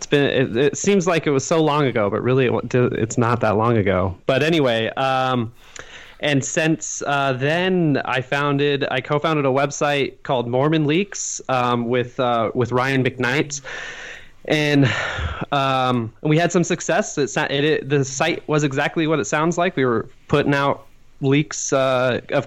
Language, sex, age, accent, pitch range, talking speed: English, male, 20-39, American, 125-150 Hz, 175 wpm